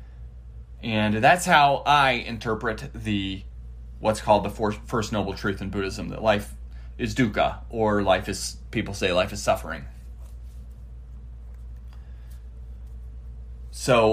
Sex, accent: male, American